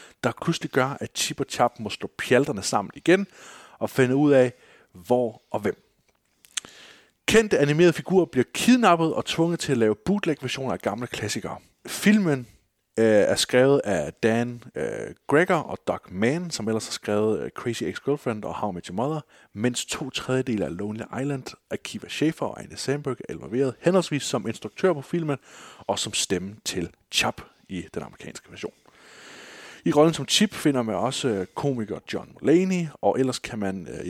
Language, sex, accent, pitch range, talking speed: Danish, male, native, 110-150 Hz, 170 wpm